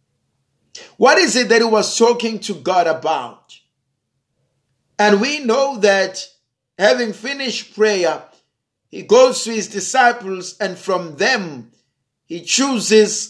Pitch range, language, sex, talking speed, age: 160-230 Hz, English, male, 120 wpm, 50-69